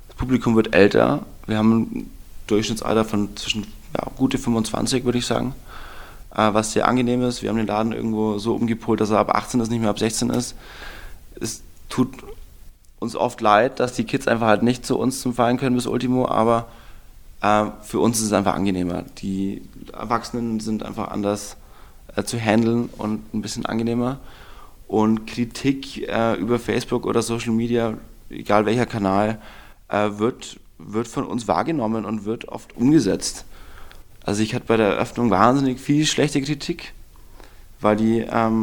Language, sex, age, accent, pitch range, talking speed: German, male, 20-39, German, 105-125 Hz, 170 wpm